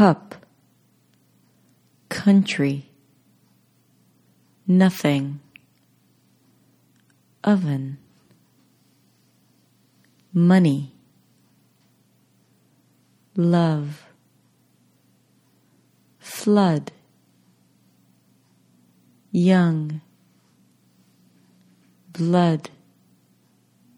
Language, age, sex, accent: English, 40-59, female, American